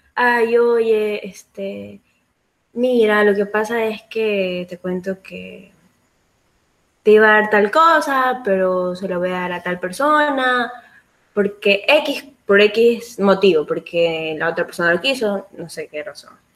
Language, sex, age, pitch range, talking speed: Spanish, female, 20-39, 175-215 Hz, 150 wpm